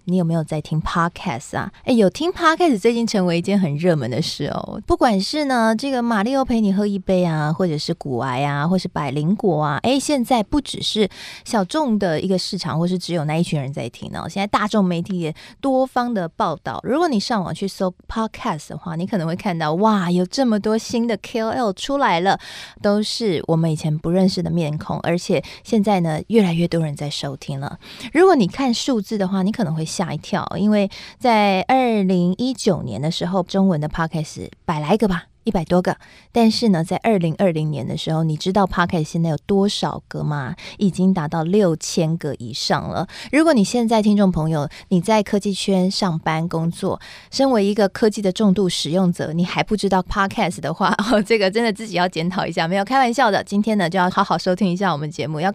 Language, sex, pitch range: Chinese, female, 165-220 Hz